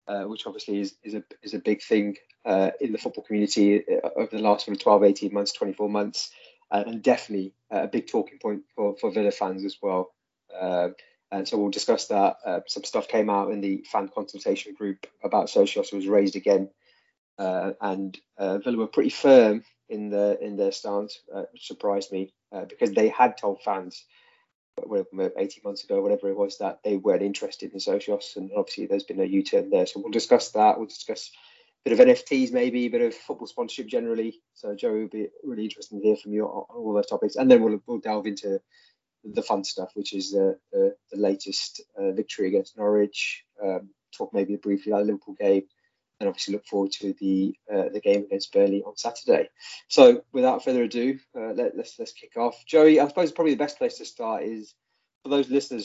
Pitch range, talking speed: 100-160 Hz, 210 wpm